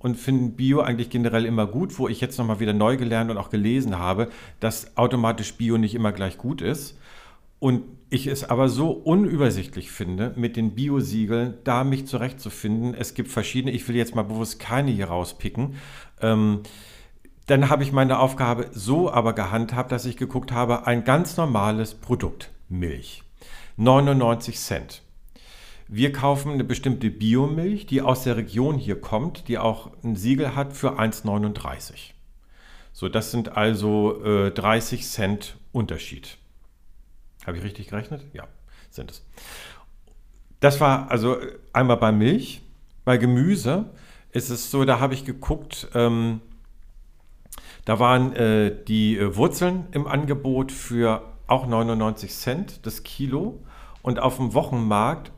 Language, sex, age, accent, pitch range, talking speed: German, male, 50-69, German, 105-130 Hz, 145 wpm